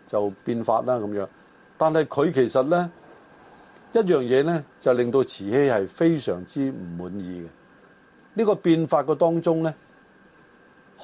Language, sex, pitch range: Chinese, male, 120-165 Hz